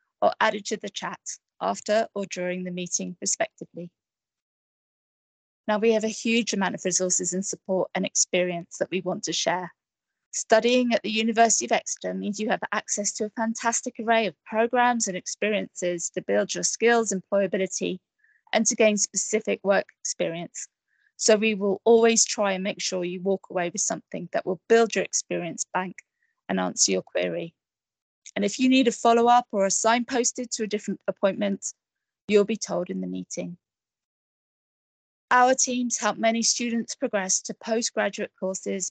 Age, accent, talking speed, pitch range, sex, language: 20-39, British, 170 wpm, 185-230 Hz, female, English